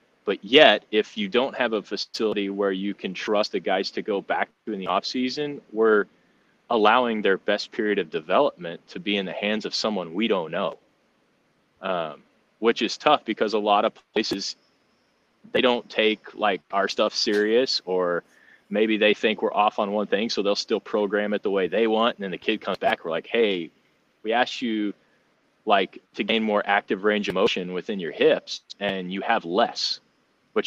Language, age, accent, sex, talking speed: English, 30-49, American, male, 200 wpm